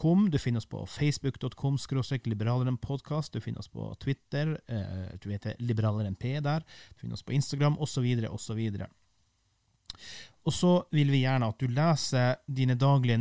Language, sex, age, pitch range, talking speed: English, male, 30-49, 110-140 Hz, 160 wpm